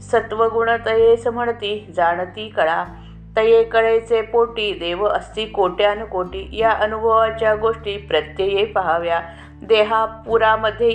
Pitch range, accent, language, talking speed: 185-230 Hz, native, Marathi, 95 wpm